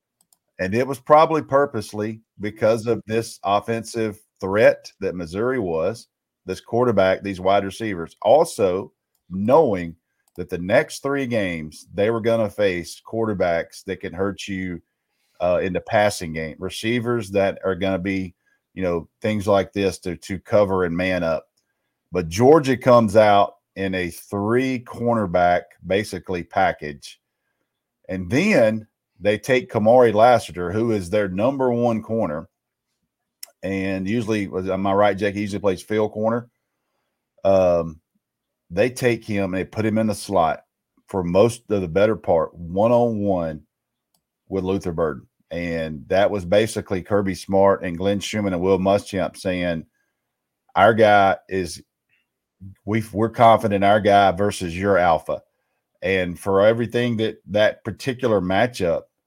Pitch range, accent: 95-110 Hz, American